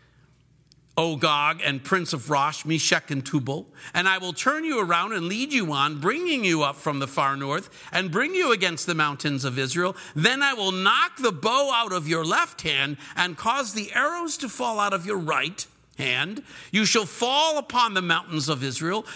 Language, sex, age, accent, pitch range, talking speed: English, male, 50-69, American, 160-245 Hz, 195 wpm